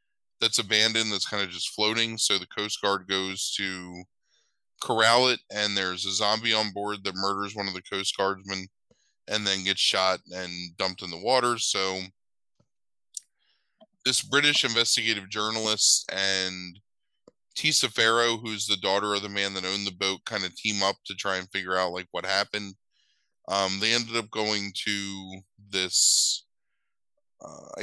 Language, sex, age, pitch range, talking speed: English, male, 20-39, 95-110 Hz, 160 wpm